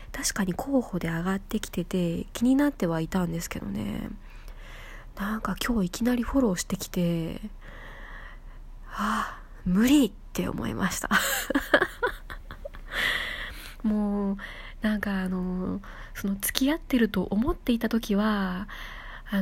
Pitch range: 170-215 Hz